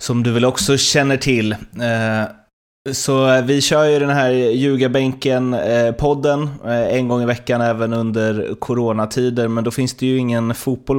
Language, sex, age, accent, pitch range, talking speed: Swedish, male, 20-39, native, 105-125 Hz, 155 wpm